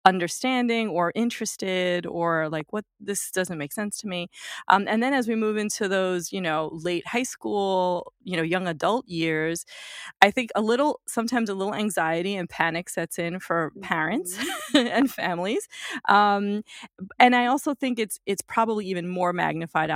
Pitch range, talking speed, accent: 165-225 Hz, 170 wpm, American